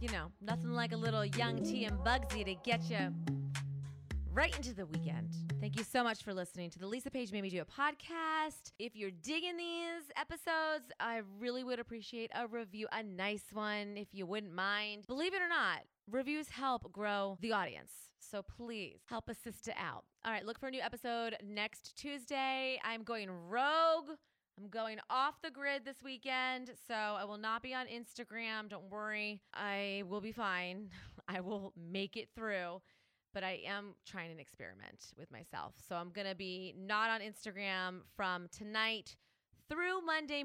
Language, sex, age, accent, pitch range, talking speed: English, female, 30-49, American, 195-250 Hz, 180 wpm